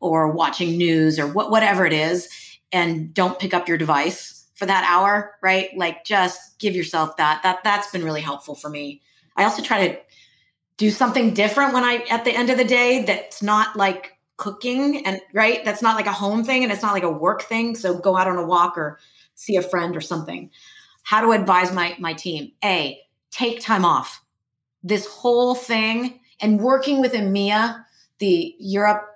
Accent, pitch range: American, 175-220 Hz